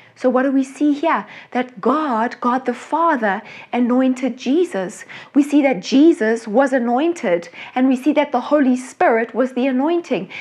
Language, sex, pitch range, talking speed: English, female, 225-280 Hz, 165 wpm